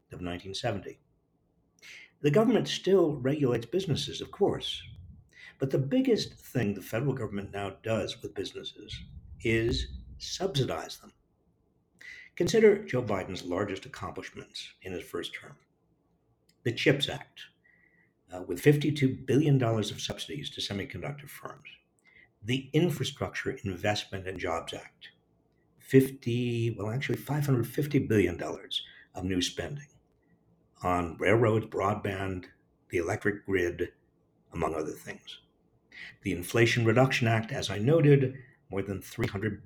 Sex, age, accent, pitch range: male, 60-79, American, 100-140 Hz